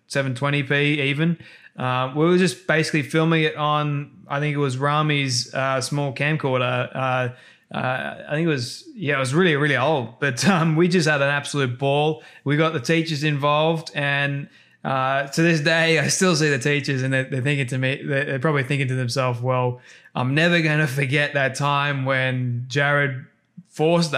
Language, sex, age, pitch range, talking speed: English, male, 20-39, 135-155 Hz, 185 wpm